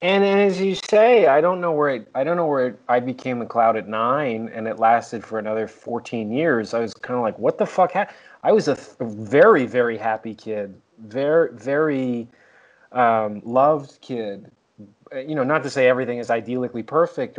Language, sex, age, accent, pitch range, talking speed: English, male, 30-49, American, 115-145 Hz, 205 wpm